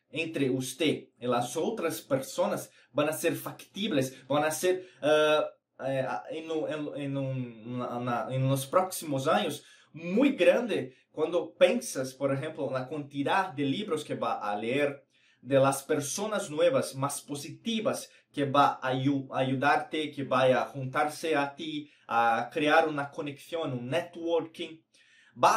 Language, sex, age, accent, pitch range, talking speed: Spanish, male, 20-39, Brazilian, 135-185 Hz, 140 wpm